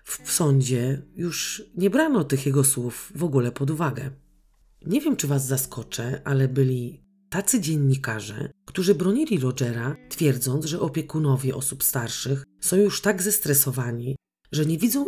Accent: native